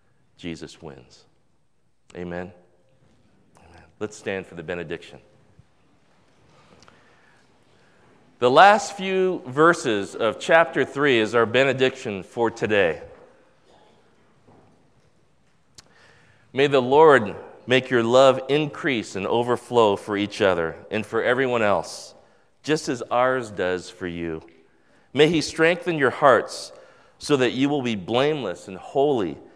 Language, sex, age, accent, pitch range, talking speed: English, male, 40-59, American, 85-130 Hz, 115 wpm